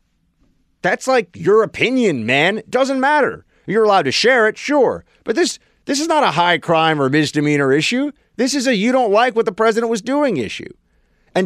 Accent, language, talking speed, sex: American, English, 200 wpm, male